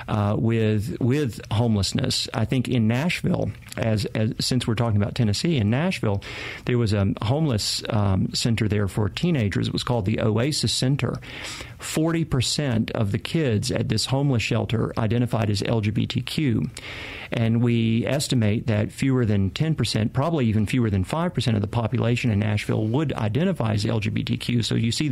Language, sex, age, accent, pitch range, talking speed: English, male, 50-69, American, 105-125 Hz, 165 wpm